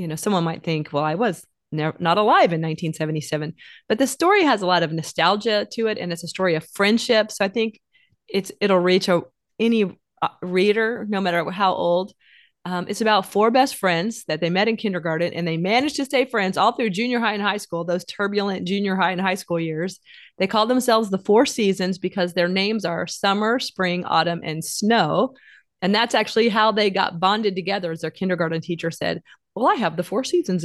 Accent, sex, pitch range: American, female, 170-210 Hz